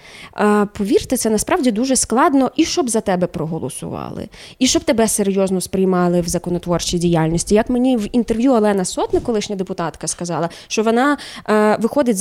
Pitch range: 185-255 Hz